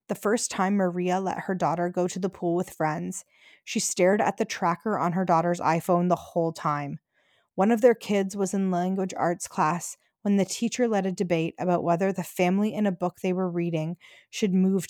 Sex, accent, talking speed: female, American, 210 wpm